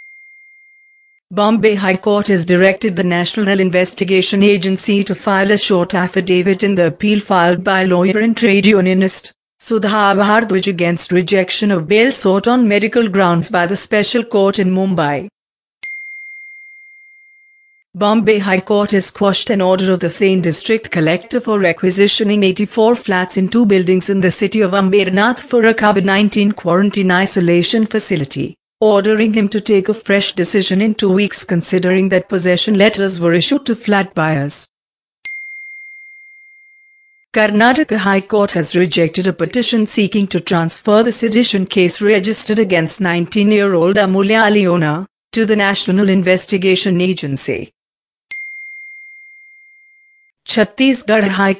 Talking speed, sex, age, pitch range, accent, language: 130 wpm, female, 50-69, 185-220 Hz, Indian, English